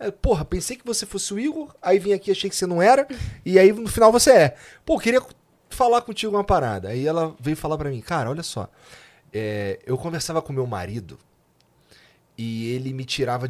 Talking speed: 205 wpm